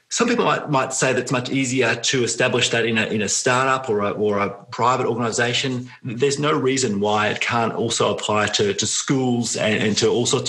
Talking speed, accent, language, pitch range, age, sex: 225 wpm, Australian, English, 110-135 Hz, 30-49, male